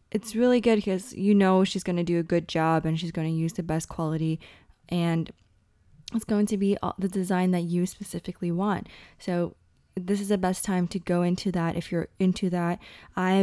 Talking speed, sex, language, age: 210 wpm, female, English, 20-39